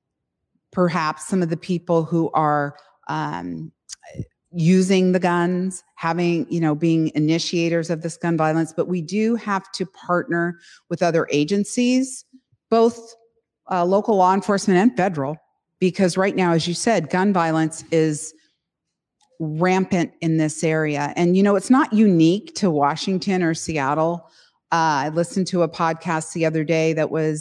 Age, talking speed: 40-59, 155 wpm